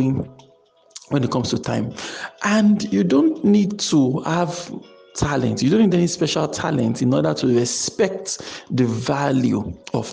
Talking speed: 150 wpm